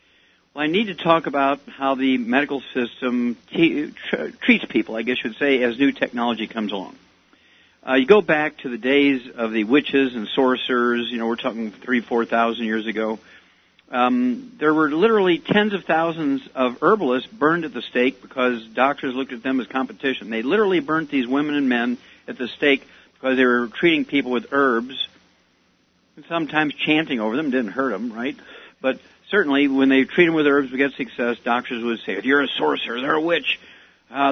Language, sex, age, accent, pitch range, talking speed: English, male, 50-69, American, 120-150 Hz, 200 wpm